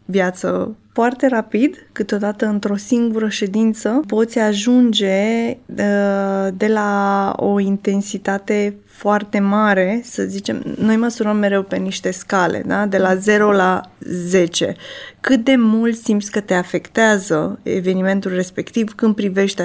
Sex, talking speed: female, 125 wpm